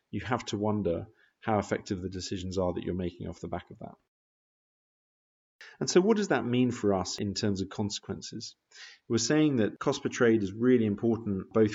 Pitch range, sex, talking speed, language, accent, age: 95-115 Hz, male, 200 wpm, English, British, 40-59